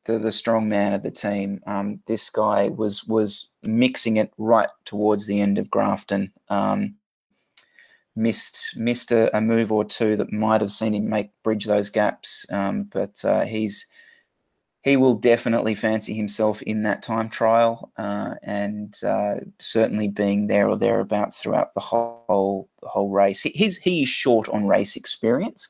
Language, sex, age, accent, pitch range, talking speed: English, male, 20-39, Australian, 105-120 Hz, 170 wpm